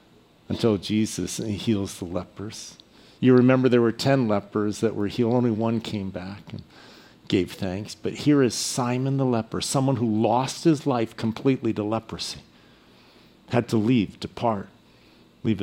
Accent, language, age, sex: American, English, 50-69, male